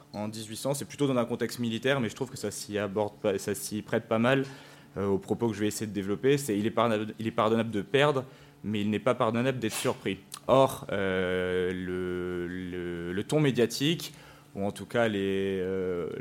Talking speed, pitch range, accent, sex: 215 wpm, 105-135 Hz, French, male